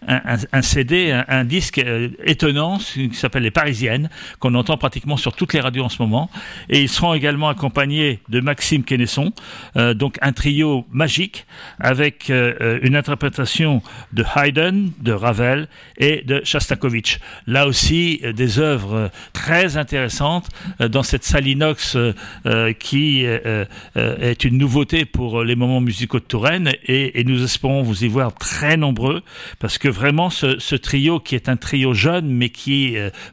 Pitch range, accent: 120-150 Hz, French